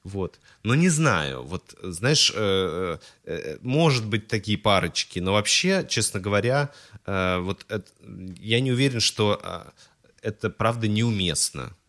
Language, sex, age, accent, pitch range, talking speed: Russian, male, 30-49, native, 90-110 Hz, 115 wpm